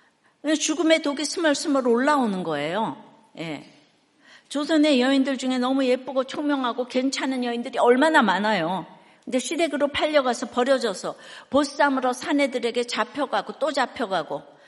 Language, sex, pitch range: Korean, female, 220-290 Hz